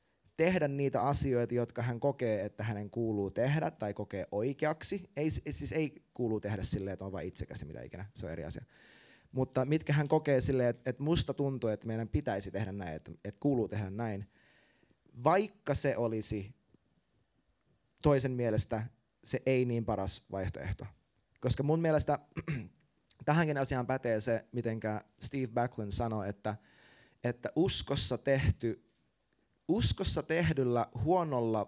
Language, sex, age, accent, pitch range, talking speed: Finnish, male, 20-39, native, 105-145 Hz, 145 wpm